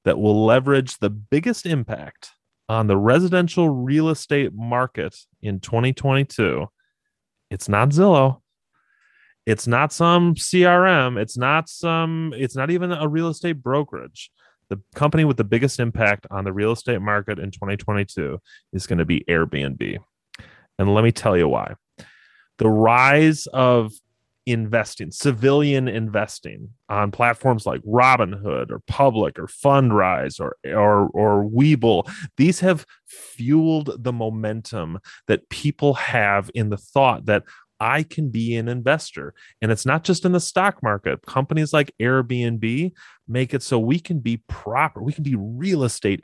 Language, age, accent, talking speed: English, 30-49, American, 145 wpm